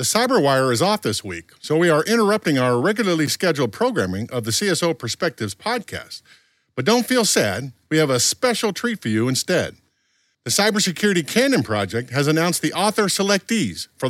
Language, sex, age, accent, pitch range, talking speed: English, male, 50-69, American, 125-195 Hz, 175 wpm